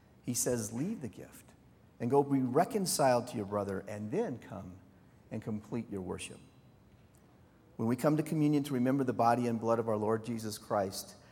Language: English